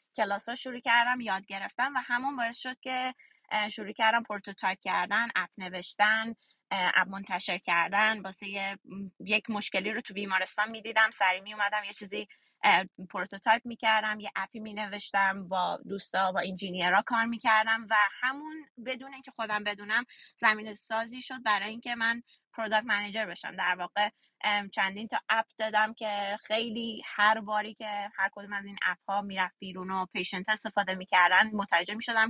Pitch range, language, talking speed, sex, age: 190-230 Hz, Persian, 160 wpm, female, 20-39